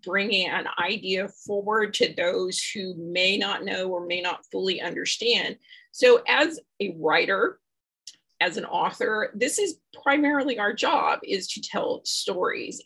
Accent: American